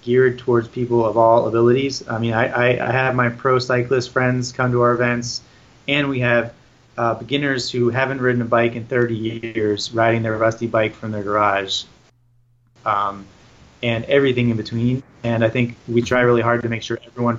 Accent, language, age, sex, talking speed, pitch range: American, English, 20-39, male, 195 wpm, 110-125 Hz